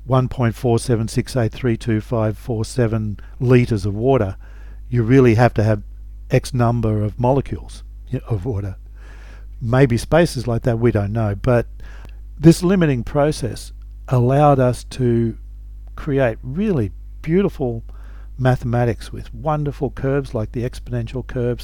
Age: 50-69